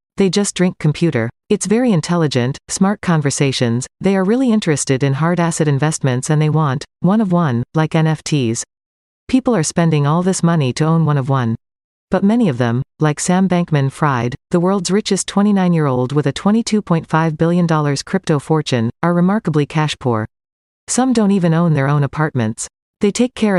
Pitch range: 140-185 Hz